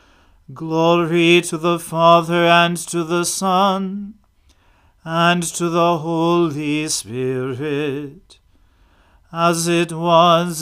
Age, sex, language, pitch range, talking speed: 40-59, male, English, 150-180 Hz, 90 wpm